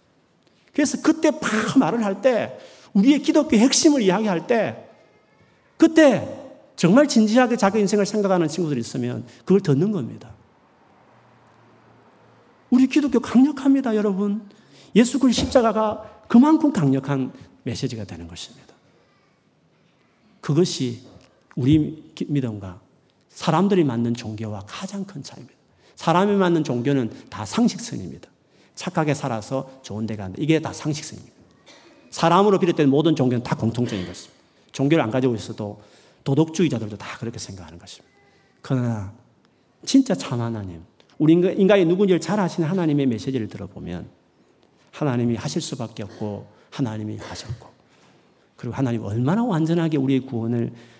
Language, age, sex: Korean, 40-59, male